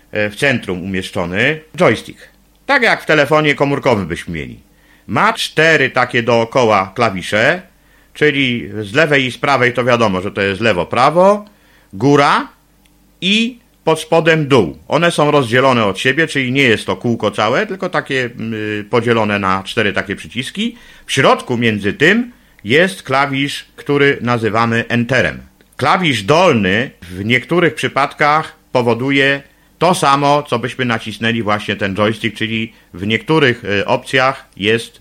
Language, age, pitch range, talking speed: Polish, 50-69, 110-150 Hz, 135 wpm